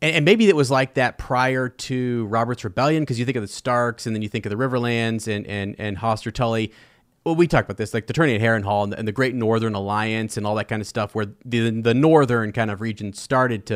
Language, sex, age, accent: English, male, 30-49, American